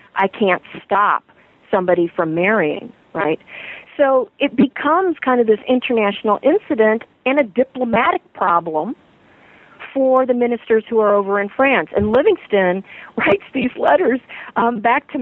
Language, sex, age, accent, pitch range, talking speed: English, female, 50-69, American, 210-300 Hz, 140 wpm